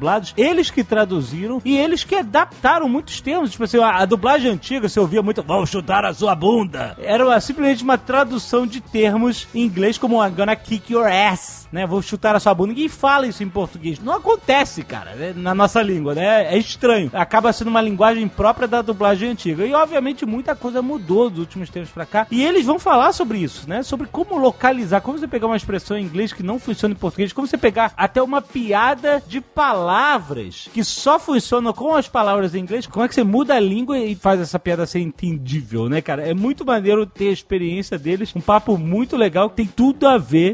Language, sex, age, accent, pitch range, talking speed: Portuguese, male, 30-49, Brazilian, 185-265 Hz, 220 wpm